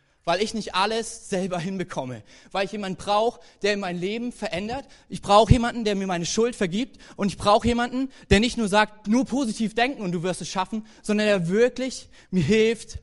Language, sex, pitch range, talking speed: German, male, 160-220 Hz, 200 wpm